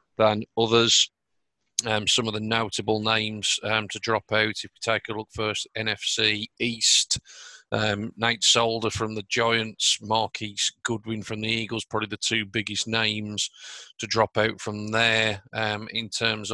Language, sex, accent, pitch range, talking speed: English, male, British, 105-115 Hz, 160 wpm